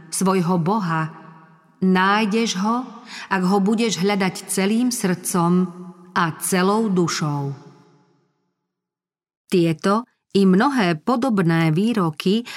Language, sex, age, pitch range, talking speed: Slovak, female, 40-59, 165-200 Hz, 85 wpm